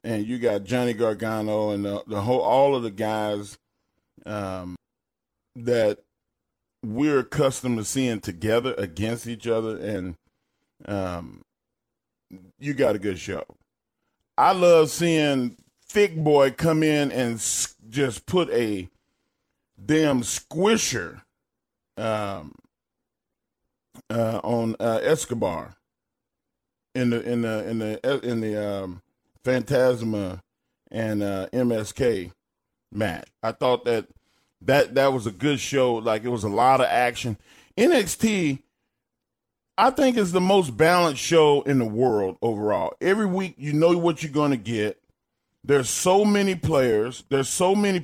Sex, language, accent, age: male, English, American, 40-59